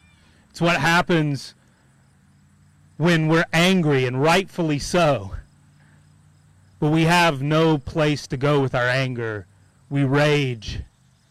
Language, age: English, 30-49